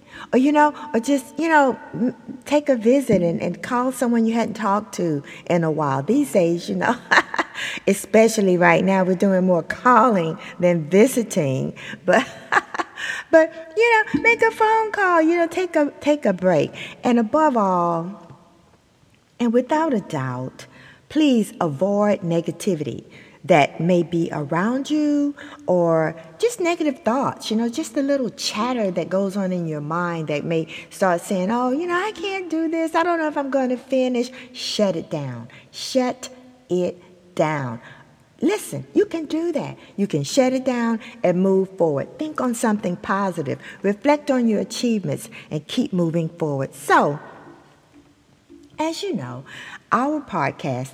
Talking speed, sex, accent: 160 wpm, female, American